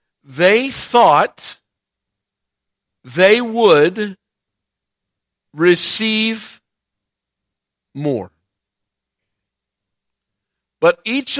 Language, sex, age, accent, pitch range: English, male, 50-69, American, 175-240 Hz